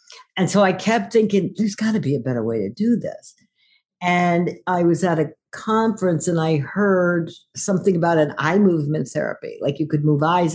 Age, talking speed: 50-69, 200 wpm